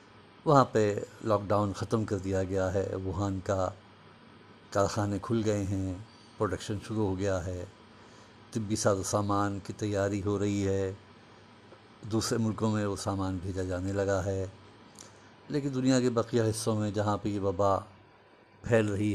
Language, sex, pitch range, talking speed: Urdu, male, 95-110 Hz, 155 wpm